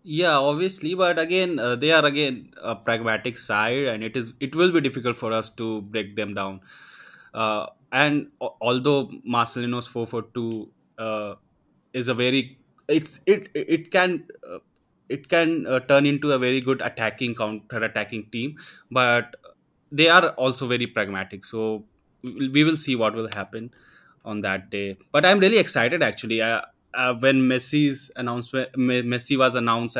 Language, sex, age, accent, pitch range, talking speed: English, male, 20-39, Indian, 110-140 Hz, 160 wpm